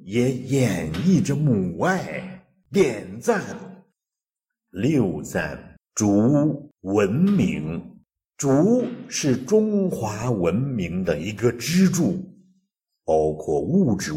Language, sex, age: Chinese, male, 60-79